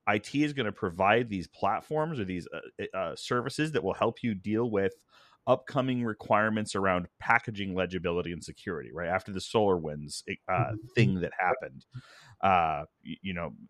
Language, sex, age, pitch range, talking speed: English, male, 30-49, 95-120 Hz, 165 wpm